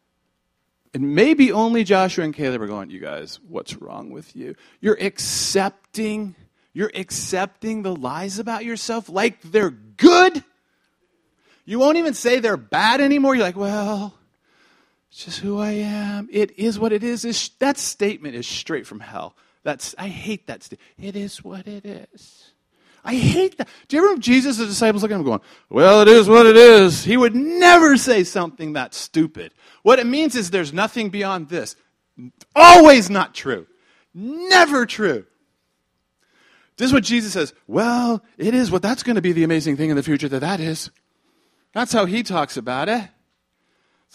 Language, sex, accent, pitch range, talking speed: English, male, American, 185-235 Hz, 175 wpm